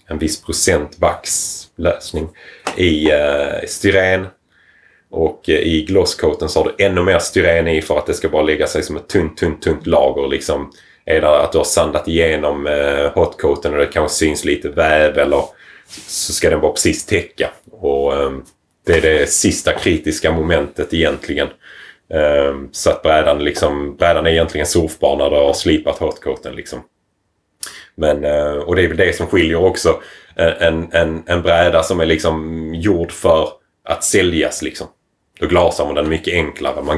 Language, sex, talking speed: Swedish, male, 165 wpm